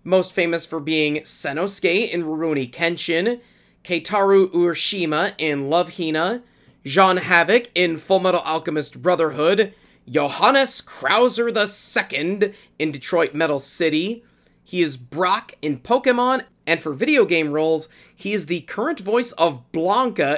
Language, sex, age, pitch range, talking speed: English, male, 30-49, 155-215 Hz, 125 wpm